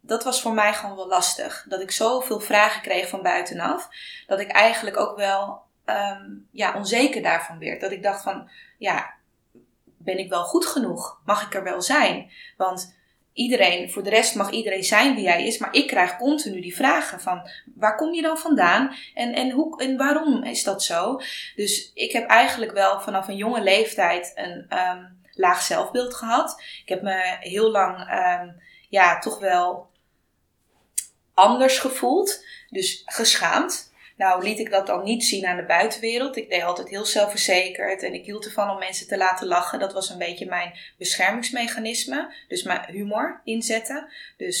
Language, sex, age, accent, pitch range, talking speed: Dutch, female, 20-39, Dutch, 185-240 Hz, 180 wpm